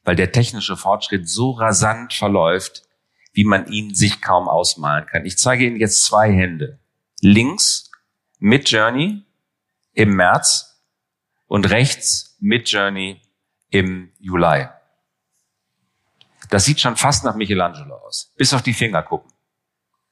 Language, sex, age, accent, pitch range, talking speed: German, male, 40-59, German, 90-115 Hz, 125 wpm